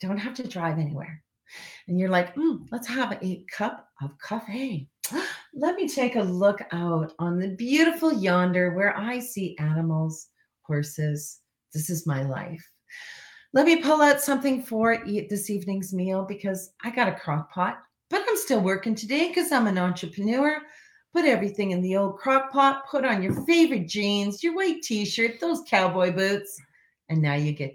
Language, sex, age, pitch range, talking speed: English, female, 40-59, 170-255 Hz, 175 wpm